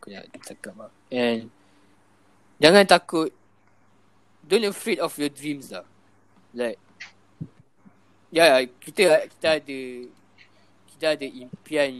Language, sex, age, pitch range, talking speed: Malay, male, 20-39, 100-135 Hz, 105 wpm